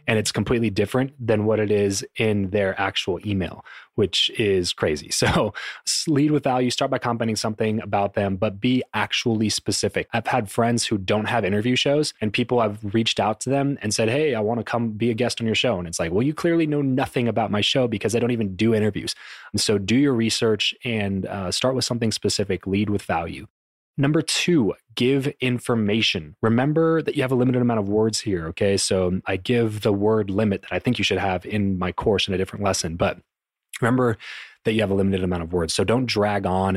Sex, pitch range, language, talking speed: male, 100-120 Hz, English, 220 wpm